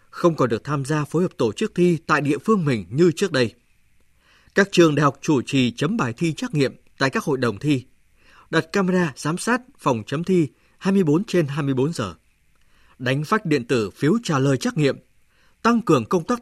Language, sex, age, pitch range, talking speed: Vietnamese, male, 20-39, 125-175 Hz, 210 wpm